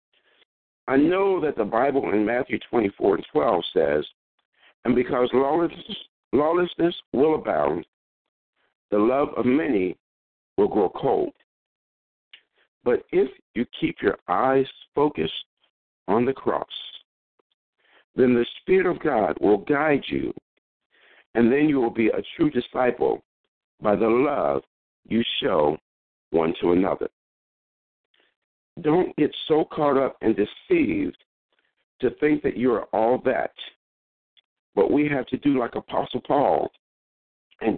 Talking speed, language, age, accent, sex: 125 wpm, English, 60-79, American, male